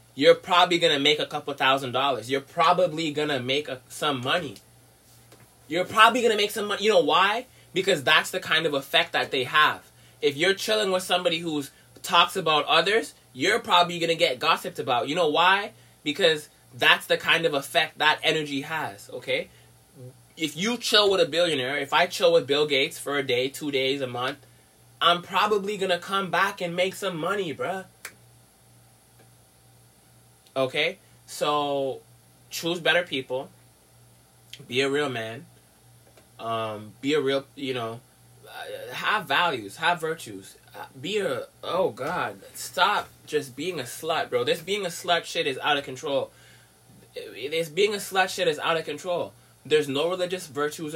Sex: male